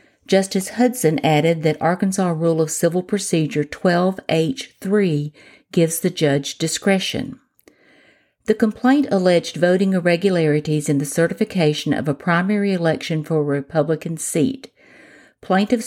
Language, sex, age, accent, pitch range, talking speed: English, female, 50-69, American, 160-200 Hz, 115 wpm